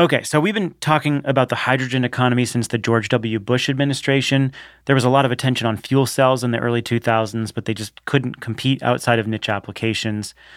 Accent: American